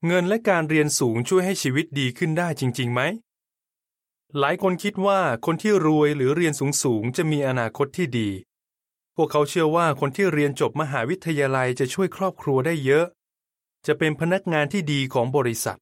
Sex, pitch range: male, 130-175 Hz